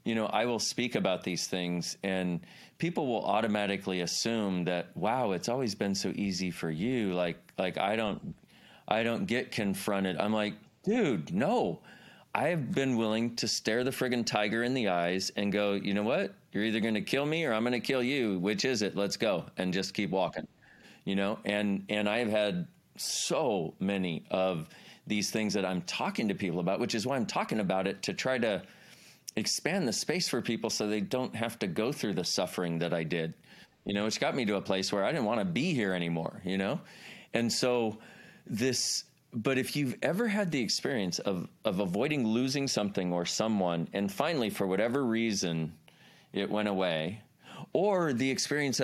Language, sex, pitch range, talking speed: English, male, 95-115 Hz, 200 wpm